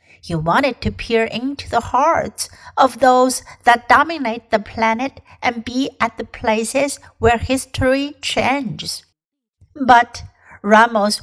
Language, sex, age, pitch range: Chinese, female, 60-79, 220-270 Hz